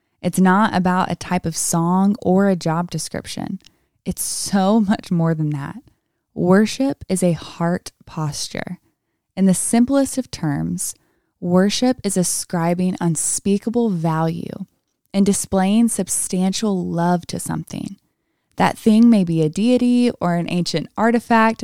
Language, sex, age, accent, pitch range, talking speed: English, female, 20-39, American, 170-210 Hz, 135 wpm